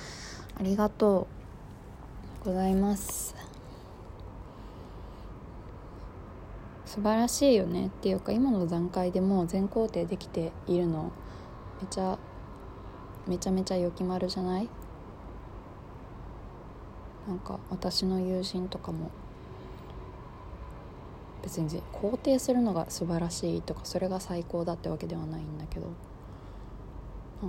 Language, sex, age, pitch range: Japanese, female, 20-39, 125-200 Hz